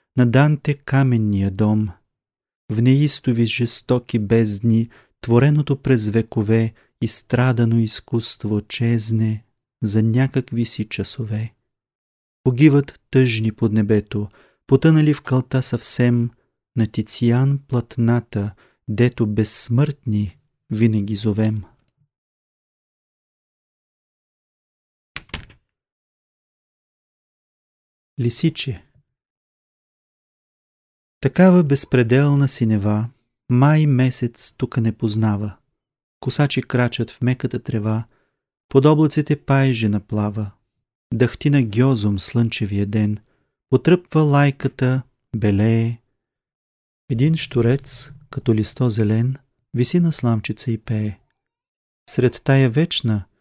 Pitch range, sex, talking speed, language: 110-130 Hz, male, 80 wpm, Bulgarian